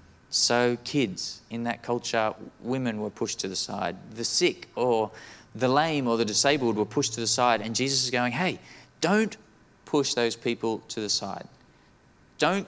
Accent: Australian